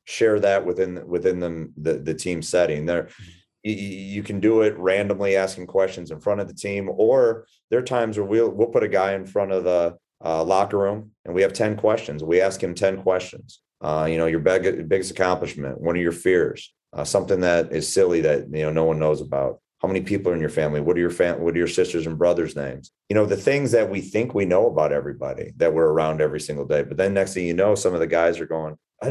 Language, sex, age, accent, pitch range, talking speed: English, male, 30-49, American, 85-105 Hz, 245 wpm